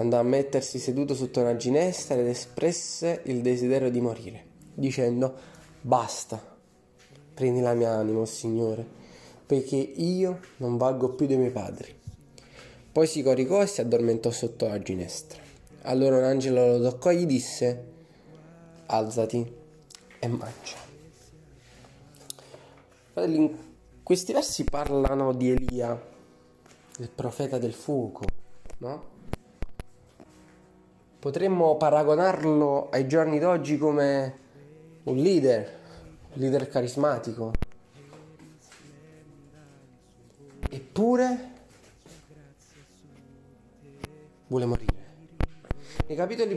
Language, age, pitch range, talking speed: Italian, 20-39, 120-155 Hz, 95 wpm